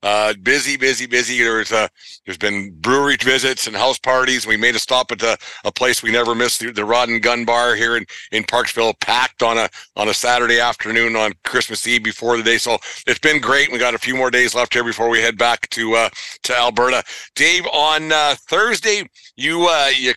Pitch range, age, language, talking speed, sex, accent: 120-135 Hz, 50-69, English, 220 wpm, male, American